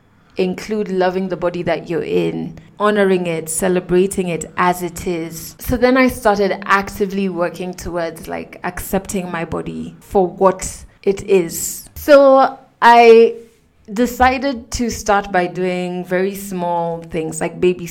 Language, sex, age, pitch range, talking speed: English, female, 20-39, 175-210 Hz, 135 wpm